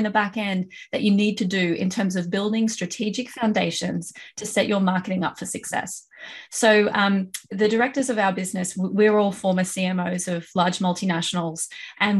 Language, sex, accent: English, female, Australian